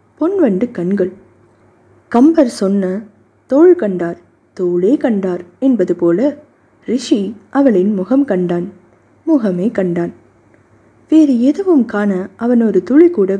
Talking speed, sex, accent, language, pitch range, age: 100 wpm, female, native, Tamil, 180-260 Hz, 20-39